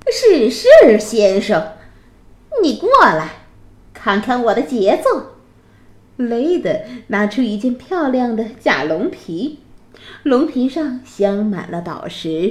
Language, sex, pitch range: Chinese, female, 210-310 Hz